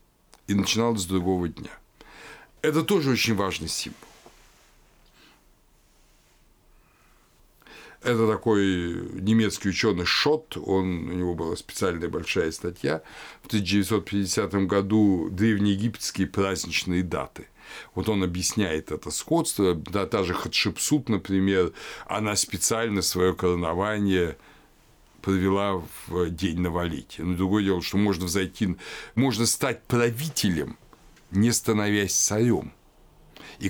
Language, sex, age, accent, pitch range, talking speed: Russian, male, 60-79, native, 90-110 Hz, 105 wpm